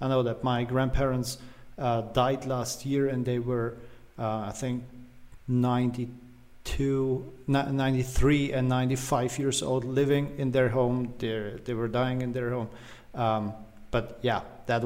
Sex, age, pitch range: male, 40-59, 115-130 Hz